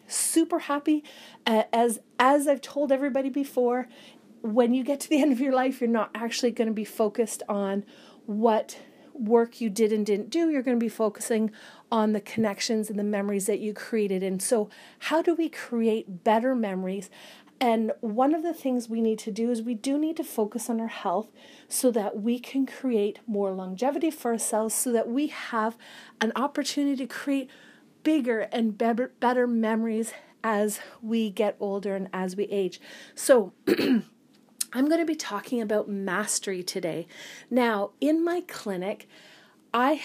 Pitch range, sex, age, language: 215-270 Hz, female, 40-59, English